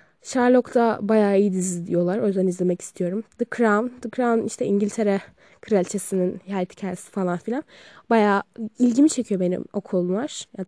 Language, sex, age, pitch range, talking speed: Turkish, female, 10-29, 185-230 Hz, 145 wpm